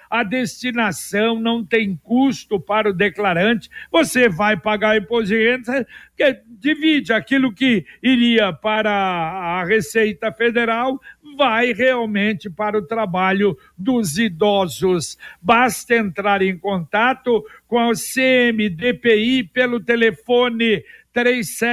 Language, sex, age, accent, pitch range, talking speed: Portuguese, male, 60-79, Brazilian, 205-240 Hz, 105 wpm